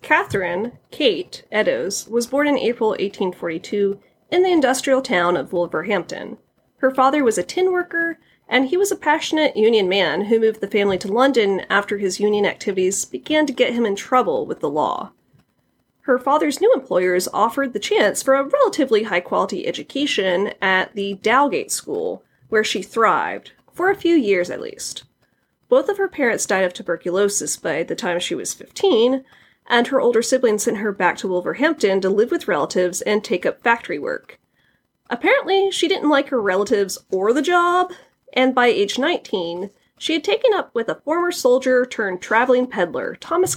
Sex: female